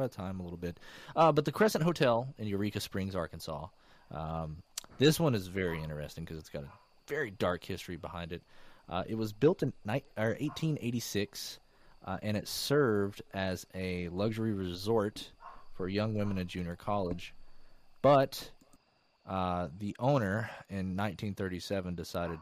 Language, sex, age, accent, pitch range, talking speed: English, male, 30-49, American, 85-110 Hz, 155 wpm